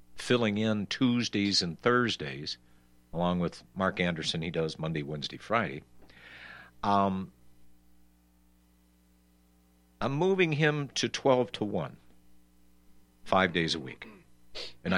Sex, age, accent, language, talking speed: male, 60-79, American, English, 110 wpm